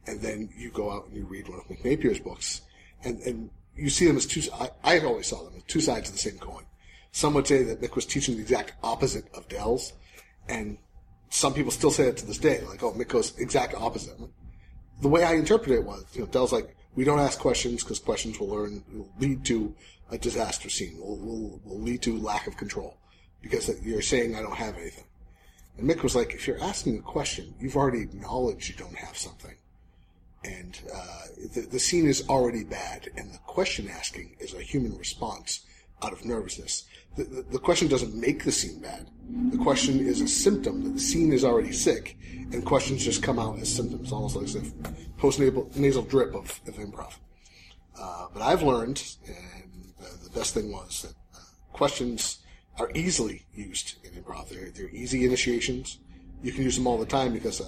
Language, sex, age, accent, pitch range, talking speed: English, male, 40-59, American, 95-135 Hz, 205 wpm